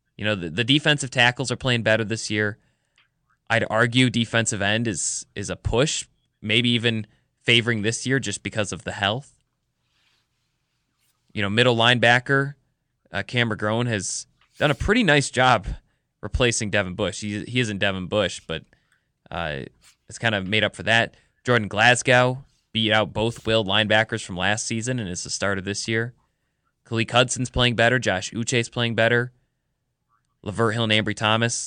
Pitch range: 105-125 Hz